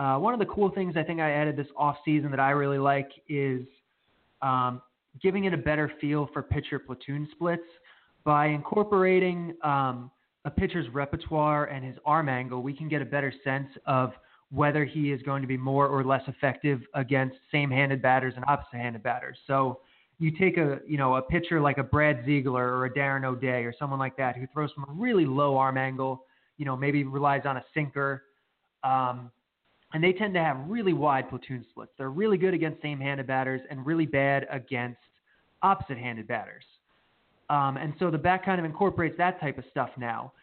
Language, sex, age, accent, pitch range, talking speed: English, male, 20-39, American, 135-160 Hz, 195 wpm